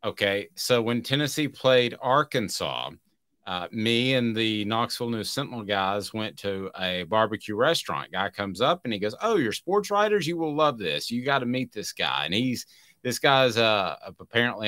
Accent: American